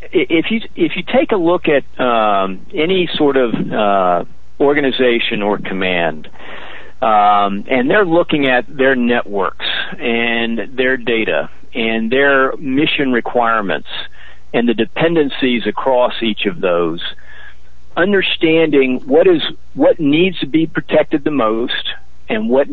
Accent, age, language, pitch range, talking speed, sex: American, 50-69, English, 110-145 Hz, 130 wpm, male